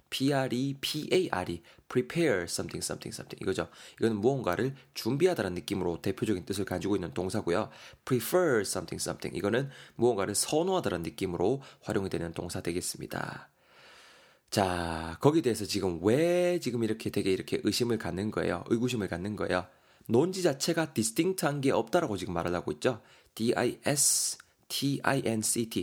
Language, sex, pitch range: Korean, male, 100-135 Hz